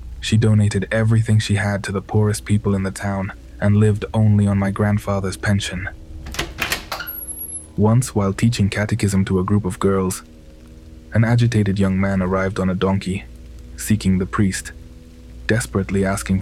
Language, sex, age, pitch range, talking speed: English, male, 20-39, 80-100 Hz, 150 wpm